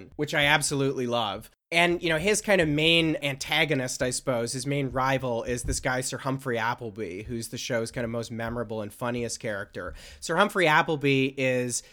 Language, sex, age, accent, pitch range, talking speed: English, male, 30-49, American, 115-135 Hz, 185 wpm